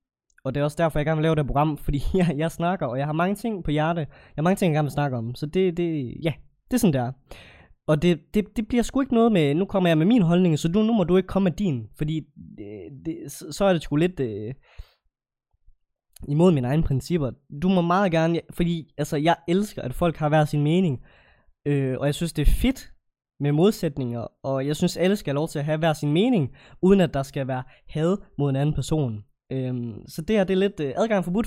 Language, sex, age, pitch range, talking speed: Danish, male, 20-39, 135-180 Hz, 255 wpm